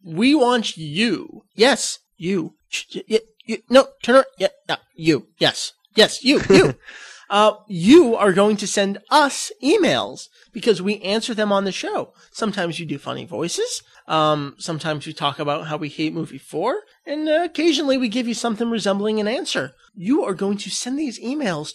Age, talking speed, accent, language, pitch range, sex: 30-49, 165 wpm, American, English, 185-280 Hz, male